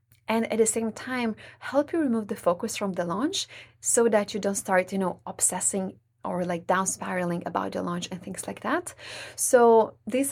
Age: 20-39